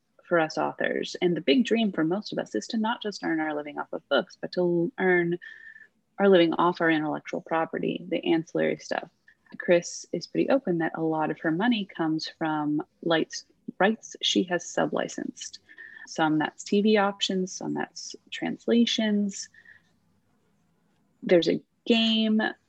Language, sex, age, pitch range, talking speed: English, female, 30-49, 160-220 Hz, 160 wpm